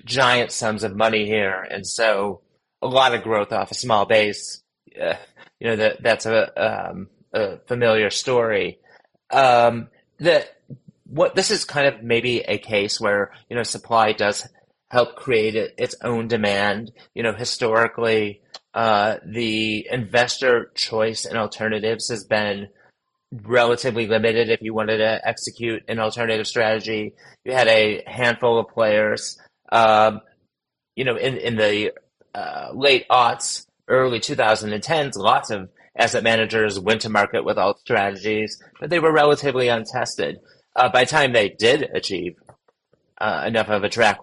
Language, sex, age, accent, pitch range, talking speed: English, male, 30-49, American, 105-125 Hz, 150 wpm